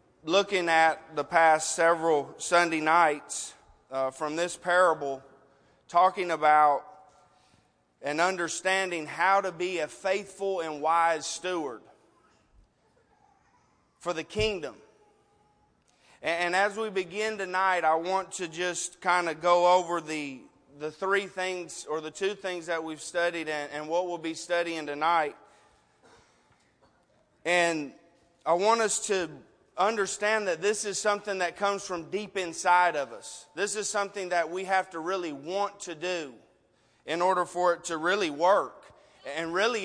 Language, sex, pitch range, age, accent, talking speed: English, male, 165-195 Hz, 30-49, American, 145 wpm